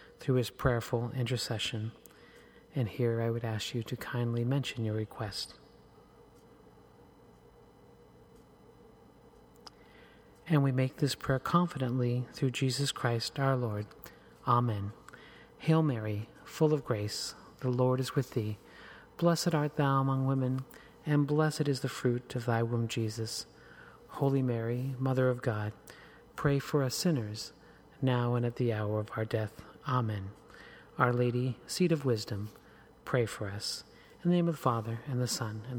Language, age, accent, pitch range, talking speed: English, 40-59, American, 115-140 Hz, 145 wpm